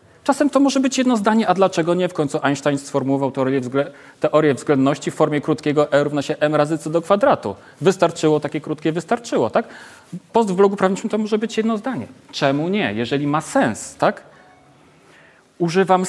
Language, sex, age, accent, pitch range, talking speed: Polish, male, 40-59, native, 140-205 Hz, 185 wpm